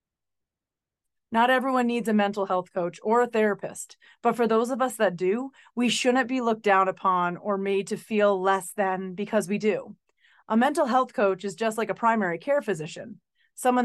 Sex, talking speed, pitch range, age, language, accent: female, 190 wpm, 190-245 Hz, 30-49, English, American